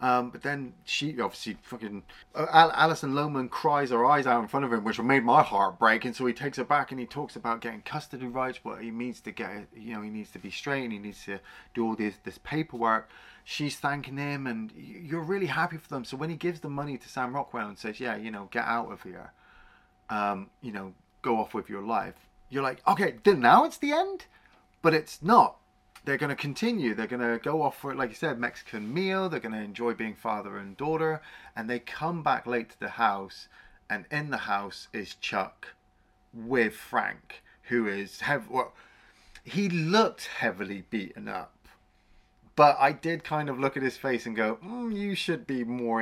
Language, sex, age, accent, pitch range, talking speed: English, male, 30-49, British, 115-155 Hz, 215 wpm